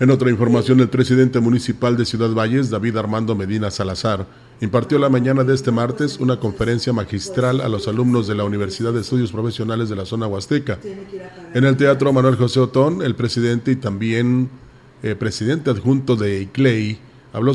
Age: 40-59